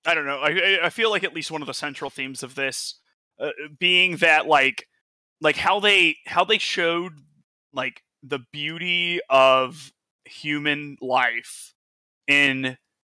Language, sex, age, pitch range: English, male, 20-39, 135-160 Hz